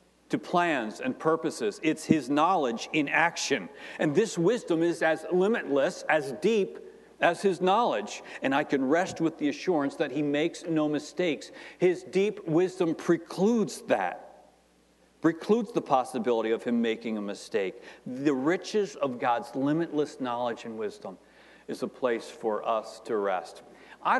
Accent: American